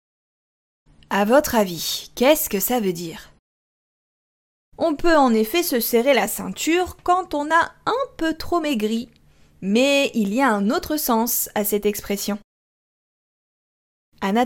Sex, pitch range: female, 200-295 Hz